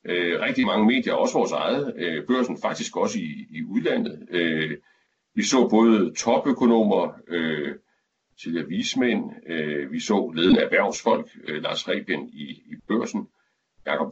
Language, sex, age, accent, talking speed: Danish, male, 60-79, native, 120 wpm